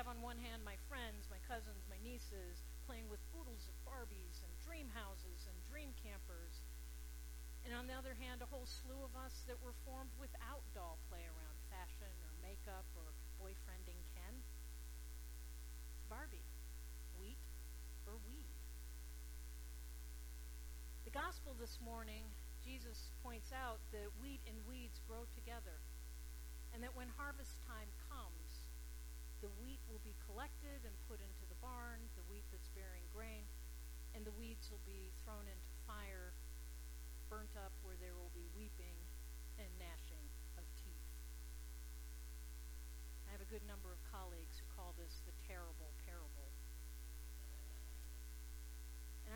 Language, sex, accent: English, female, American